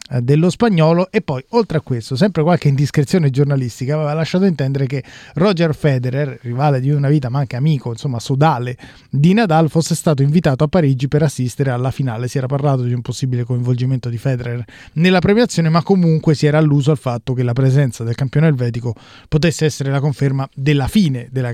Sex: male